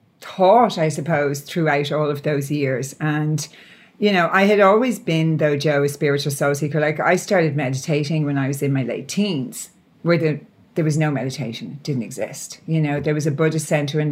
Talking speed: 210 wpm